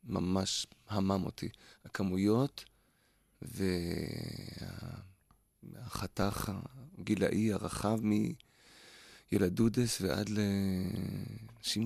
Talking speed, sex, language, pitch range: 50 wpm, male, English, 95-115 Hz